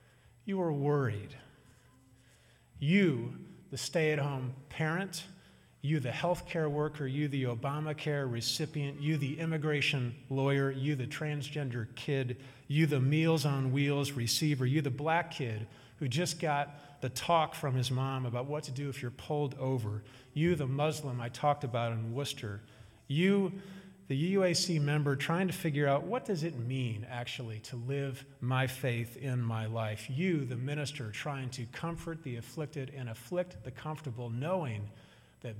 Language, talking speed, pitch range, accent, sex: English, 155 wpm, 120-150 Hz, American, male